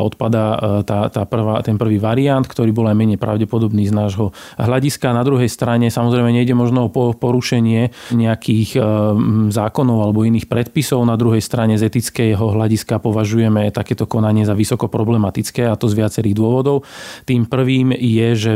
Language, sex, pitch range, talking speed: Slovak, male, 110-125 Hz, 160 wpm